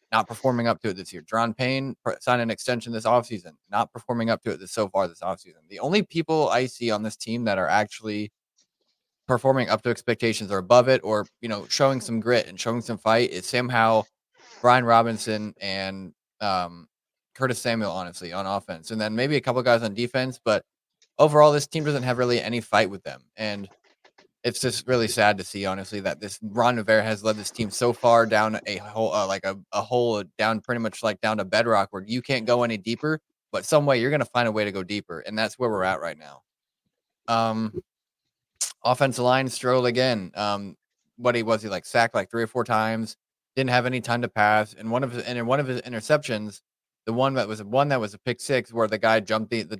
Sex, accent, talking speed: male, American, 225 wpm